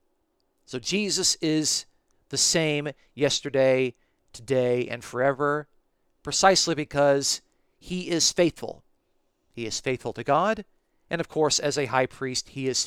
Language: English